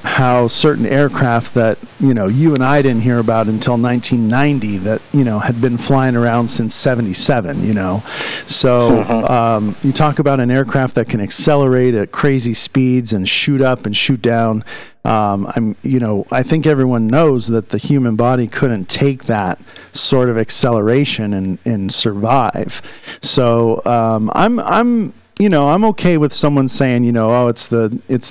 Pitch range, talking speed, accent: 115-135 Hz, 175 wpm, American